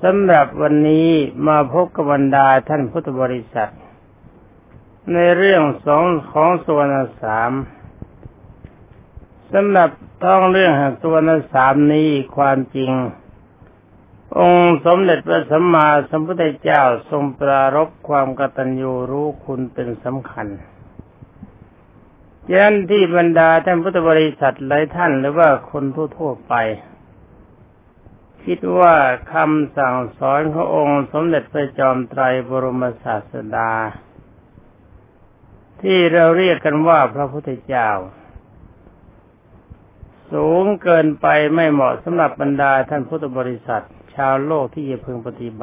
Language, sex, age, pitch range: Thai, male, 60-79, 120-160 Hz